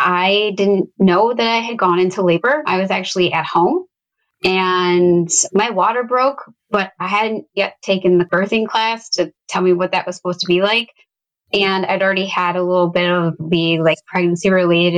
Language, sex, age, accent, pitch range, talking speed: English, female, 20-39, American, 175-195 Hz, 190 wpm